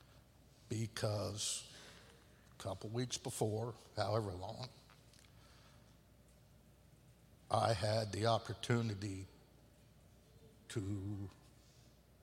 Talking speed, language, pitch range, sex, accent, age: 60 wpm, English, 105-120 Hz, male, American, 60-79